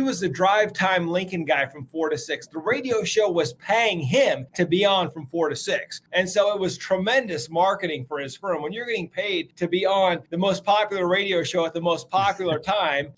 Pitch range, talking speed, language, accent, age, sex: 155-200 Hz, 230 wpm, English, American, 30-49, male